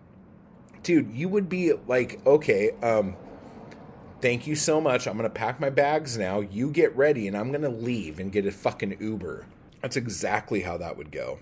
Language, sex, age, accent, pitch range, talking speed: English, male, 30-49, American, 95-140 Hz, 195 wpm